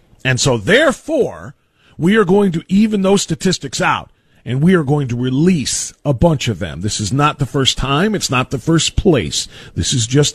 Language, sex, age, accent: English, male, 40-59, American